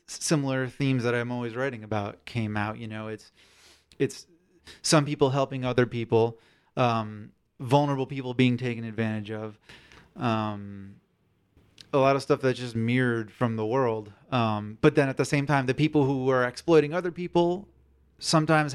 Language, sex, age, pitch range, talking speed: English, male, 30-49, 110-135 Hz, 165 wpm